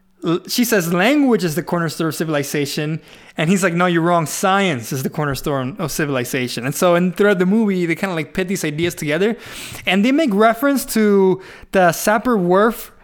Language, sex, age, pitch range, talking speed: English, male, 20-39, 155-195 Hz, 195 wpm